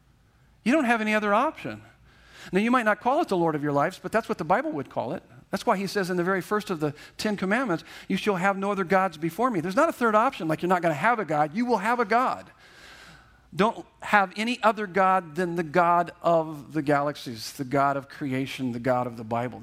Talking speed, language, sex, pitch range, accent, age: 255 wpm, English, male, 145-195 Hz, American, 50-69